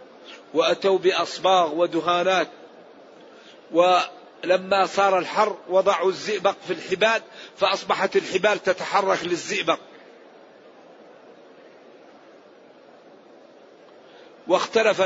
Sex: male